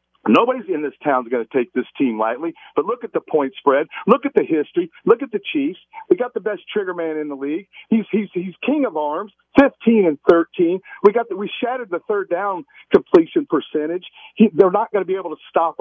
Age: 50-69